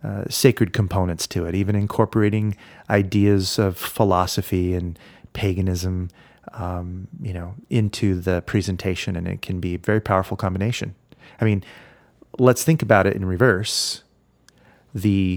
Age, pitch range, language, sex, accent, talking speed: 30-49, 95-115 Hz, English, male, American, 135 wpm